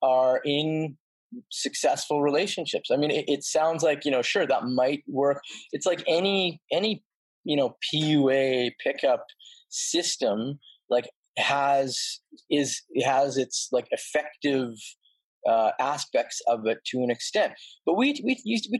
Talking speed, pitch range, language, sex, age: 135 wpm, 125-165 Hz, English, male, 20-39